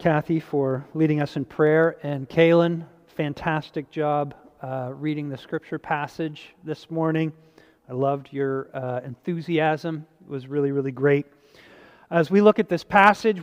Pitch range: 160-215 Hz